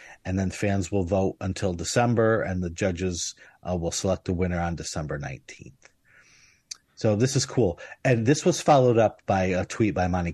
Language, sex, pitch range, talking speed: English, male, 90-110 Hz, 185 wpm